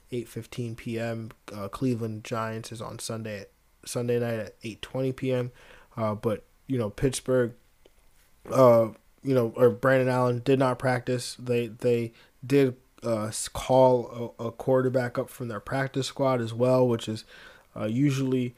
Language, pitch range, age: English, 110-125 Hz, 20-39